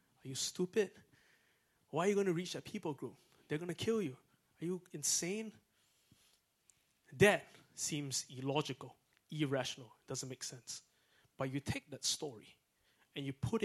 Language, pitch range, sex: English, 125-155 Hz, male